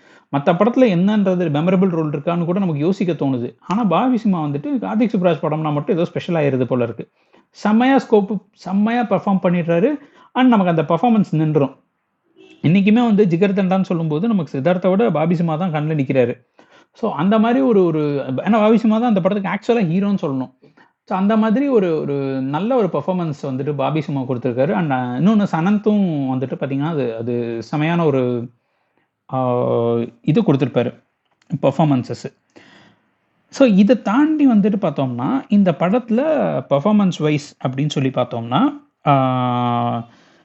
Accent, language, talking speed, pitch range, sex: native, Tamil, 140 wpm, 145-220 Hz, male